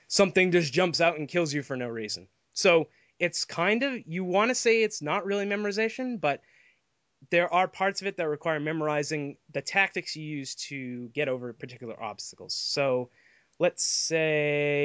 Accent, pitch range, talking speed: American, 135-170 Hz, 175 wpm